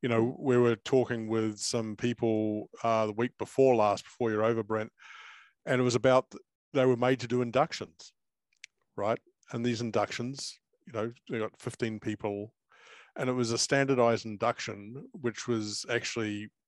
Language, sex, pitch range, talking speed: English, male, 110-130 Hz, 165 wpm